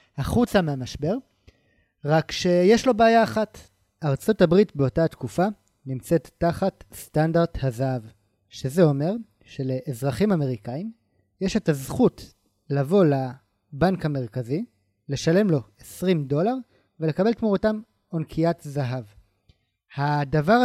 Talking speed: 95 wpm